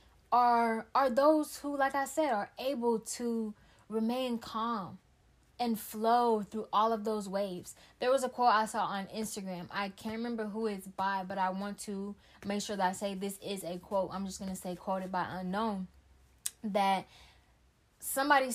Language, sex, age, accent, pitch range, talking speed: English, female, 10-29, American, 195-235 Hz, 180 wpm